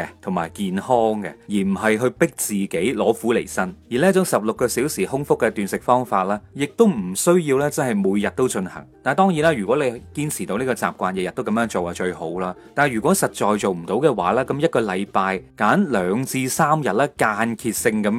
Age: 30-49